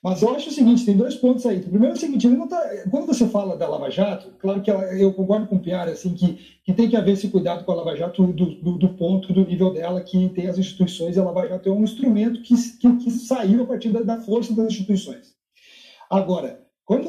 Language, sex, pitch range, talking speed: Portuguese, male, 190-250 Hz, 260 wpm